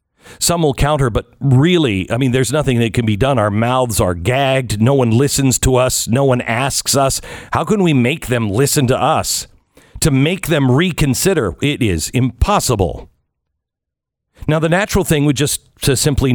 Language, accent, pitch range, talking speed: English, American, 100-145 Hz, 180 wpm